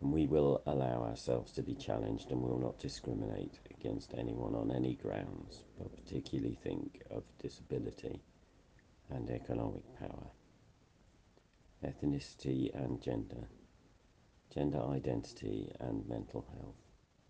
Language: English